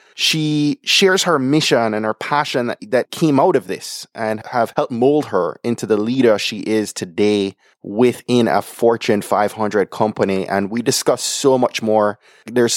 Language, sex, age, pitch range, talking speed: English, male, 20-39, 110-130 Hz, 170 wpm